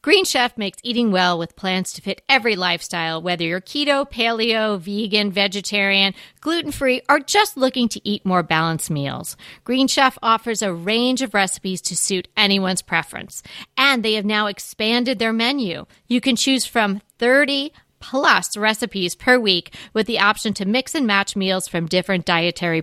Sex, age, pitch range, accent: female, 40-59, 185-240 Hz, American